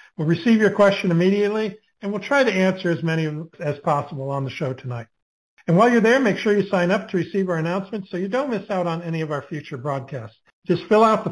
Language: English